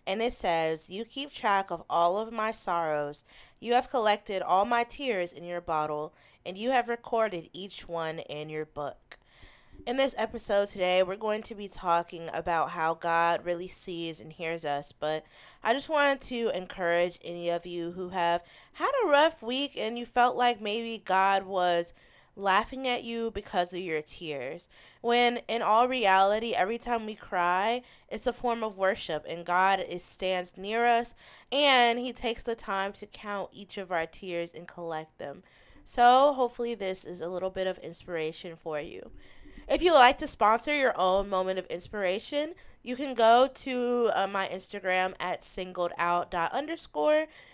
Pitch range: 175-235 Hz